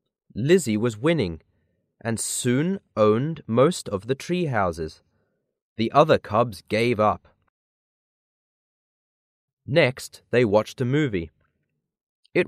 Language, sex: Chinese, male